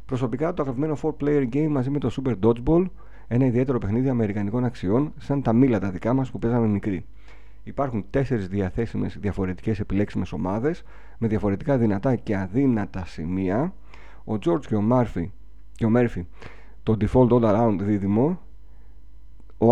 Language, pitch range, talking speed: Greek, 95-130 Hz, 150 wpm